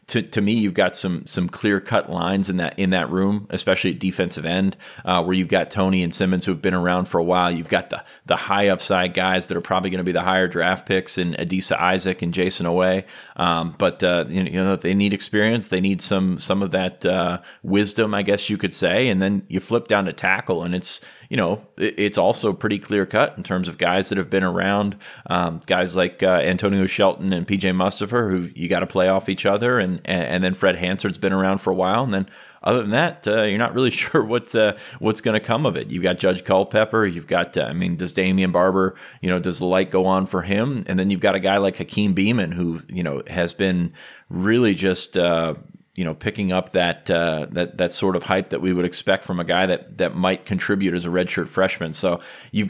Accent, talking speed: American, 240 wpm